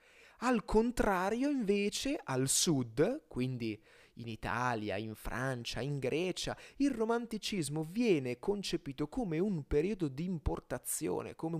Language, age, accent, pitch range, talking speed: Italian, 30-49, native, 125-170 Hz, 115 wpm